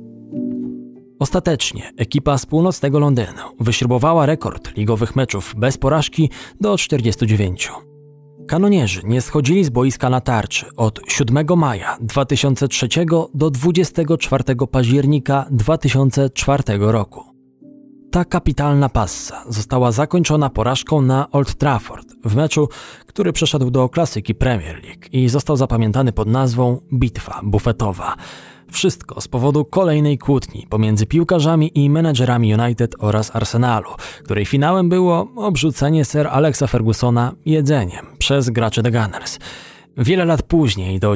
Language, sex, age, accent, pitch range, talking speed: Polish, male, 20-39, native, 110-150 Hz, 120 wpm